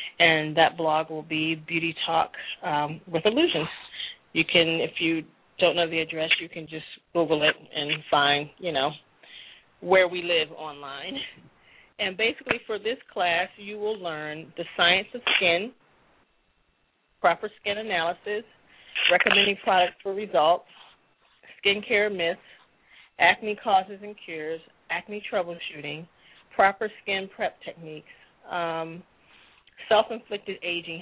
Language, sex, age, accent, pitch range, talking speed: English, female, 40-59, American, 165-205 Hz, 125 wpm